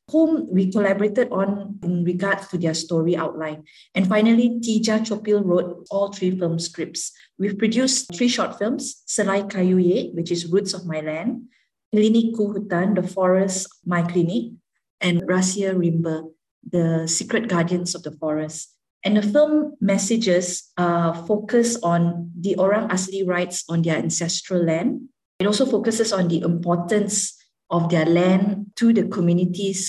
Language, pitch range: English, 175-200 Hz